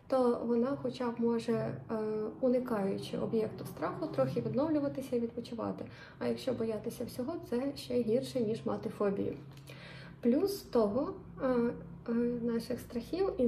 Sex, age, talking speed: female, 20-39, 120 wpm